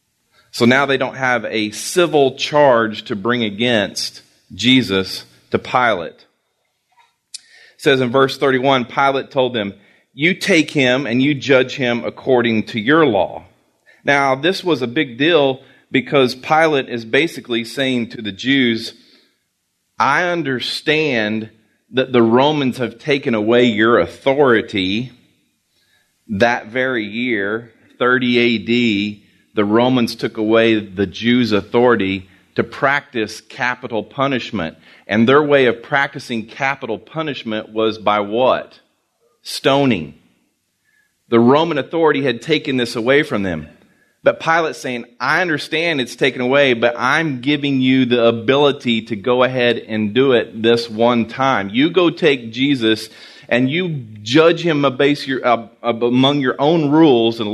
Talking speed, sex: 135 wpm, male